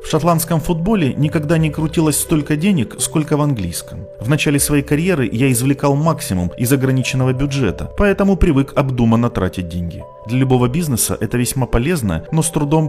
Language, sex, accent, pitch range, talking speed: Russian, male, native, 115-155 Hz, 165 wpm